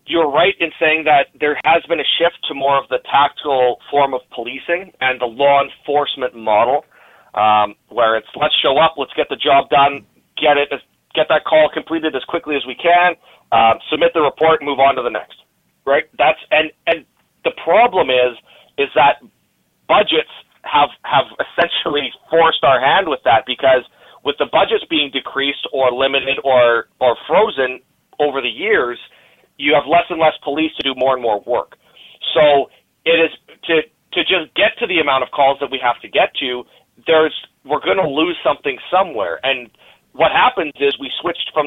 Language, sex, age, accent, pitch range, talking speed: English, male, 30-49, American, 135-165 Hz, 185 wpm